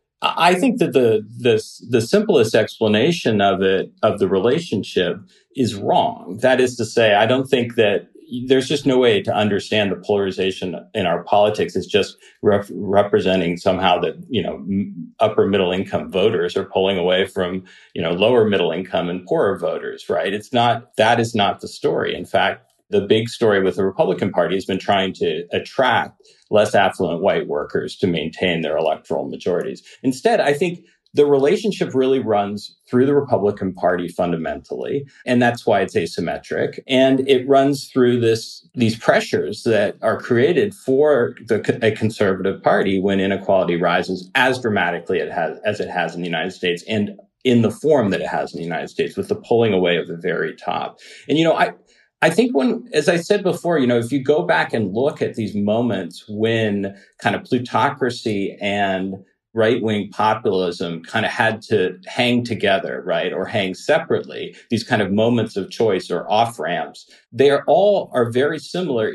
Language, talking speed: English, 180 wpm